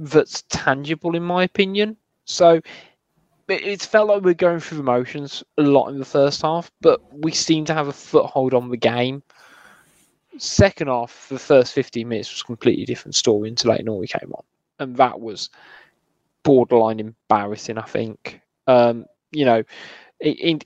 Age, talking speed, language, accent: 20-39, 170 wpm, English, British